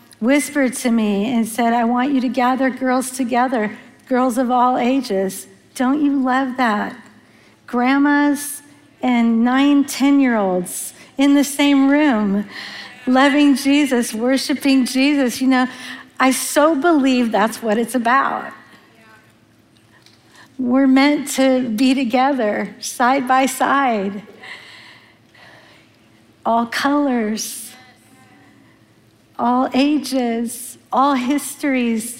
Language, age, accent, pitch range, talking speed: English, 50-69, American, 235-275 Hz, 105 wpm